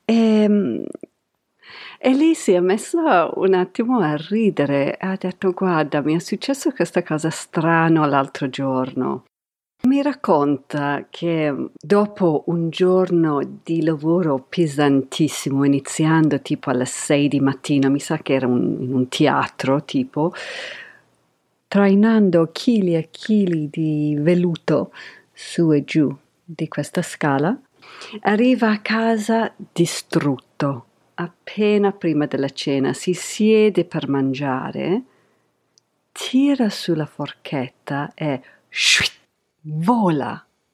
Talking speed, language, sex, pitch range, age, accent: 110 wpm, Italian, female, 145-205 Hz, 50-69, native